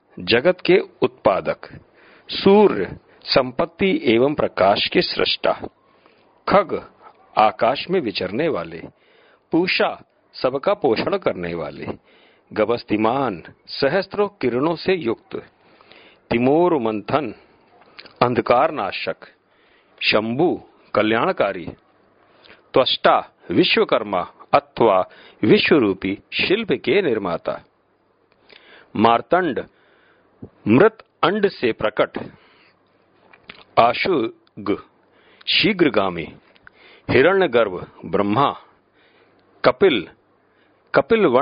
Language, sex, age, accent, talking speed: Hindi, male, 50-69, native, 70 wpm